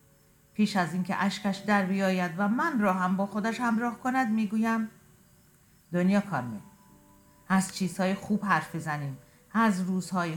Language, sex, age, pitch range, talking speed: Persian, female, 50-69, 155-200 Hz, 145 wpm